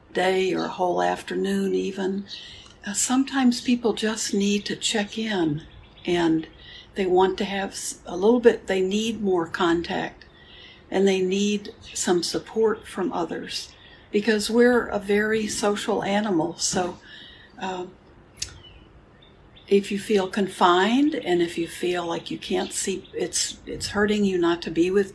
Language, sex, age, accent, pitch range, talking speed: English, female, 60-79, American, 180-215 Hz, 145 wpm